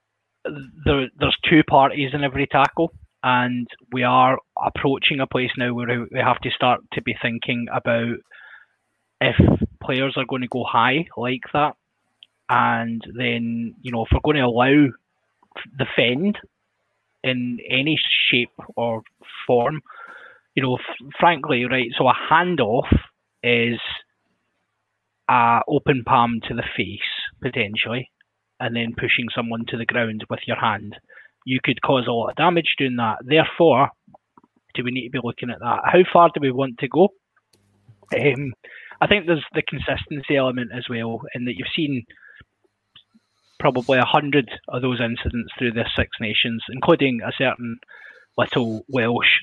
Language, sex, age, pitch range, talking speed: English, male, 20-39, 120-140 Hz, 155 wpm